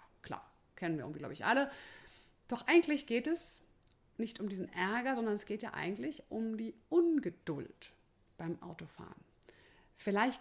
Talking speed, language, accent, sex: 150 wpm, German, German, female